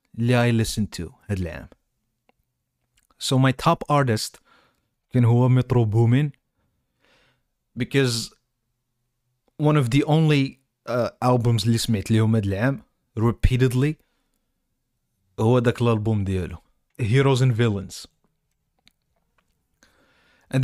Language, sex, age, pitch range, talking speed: Arabic, male, 30-49, 110-135 Hz, 85 wpm